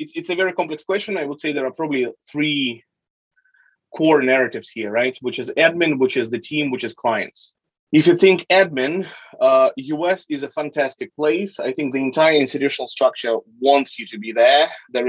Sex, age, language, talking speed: male, 20-39, English, 190 wpm